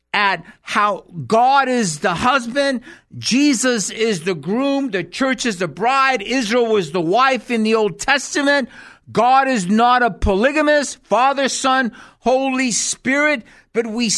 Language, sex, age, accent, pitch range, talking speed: English, male, 50-69, American, 210-270 Hz, 145 wpm